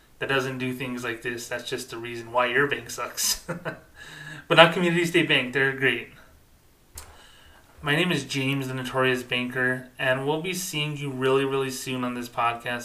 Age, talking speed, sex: 20-39, 180 wpm, male